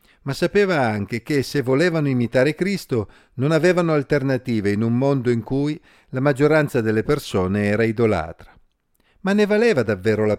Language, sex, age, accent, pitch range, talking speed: Italian, male, 50-69, native, 110-155 Hz, 155 wpm